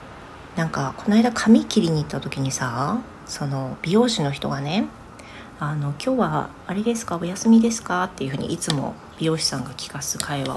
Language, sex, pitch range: Japanese, female, 155-235 Hz